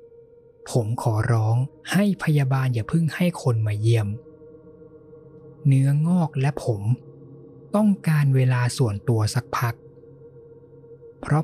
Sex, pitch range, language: male, 115-160 Hz, Thai